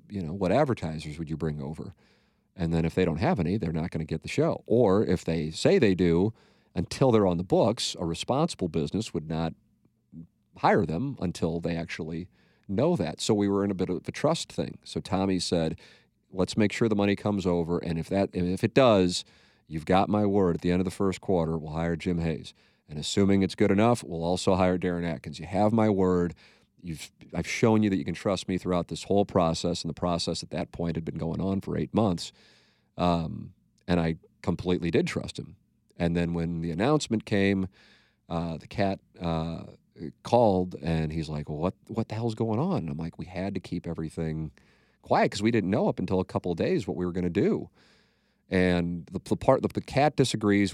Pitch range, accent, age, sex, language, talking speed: 85-100 Hz, American, 40-59, male, English, 220 wpm